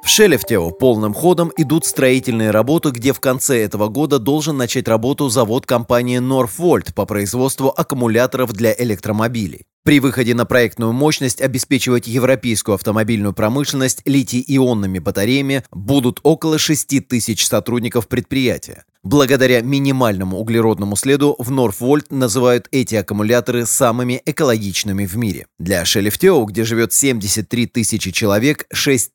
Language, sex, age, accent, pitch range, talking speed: Russian, male, 30-49, native, 110-135 Hz, 125 wpm